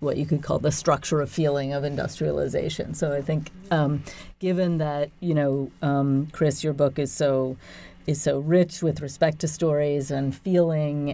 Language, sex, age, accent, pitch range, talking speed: English, female, 40-59, American, 135-155 Hz, 180 wpm